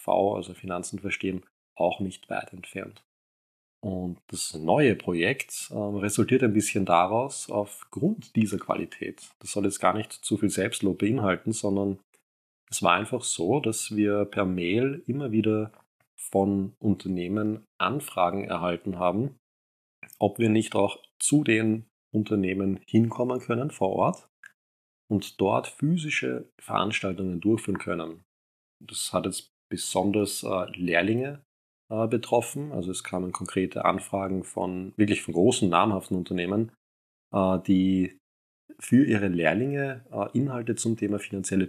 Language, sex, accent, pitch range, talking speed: German, male, German, 90-110 Hz, 130 wpm